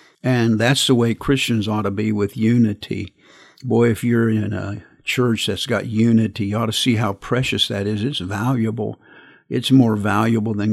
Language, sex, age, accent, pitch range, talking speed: English, male, 50-69, American, 105-120 Hz, 185 wpm